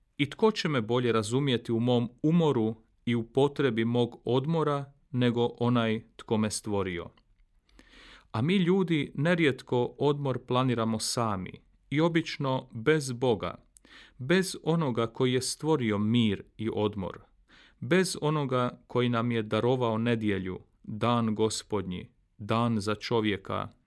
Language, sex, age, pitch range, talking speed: Croatian, male, 40-59, 110-135 Hz, 125 wpm